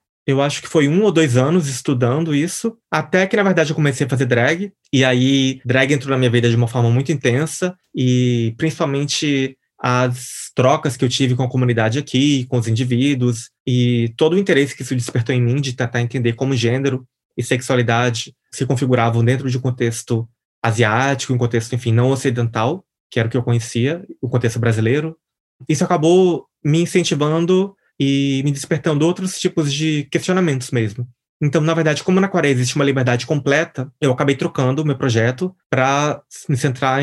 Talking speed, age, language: 185 wpm, 20-39, Portuguese